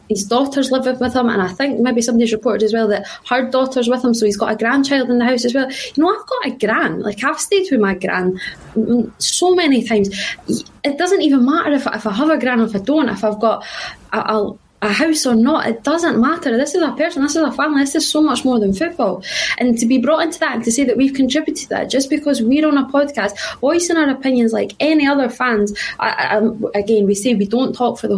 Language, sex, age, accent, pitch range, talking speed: English, female, 20-39, British, 225-280 Hz, 260 wpm